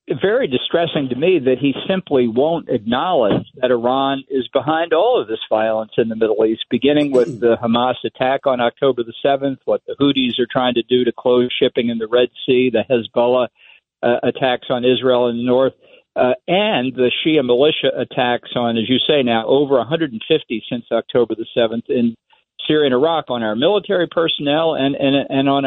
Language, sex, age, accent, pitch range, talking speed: English, male, 50-69, American, 120-145 Hz, 190 wpm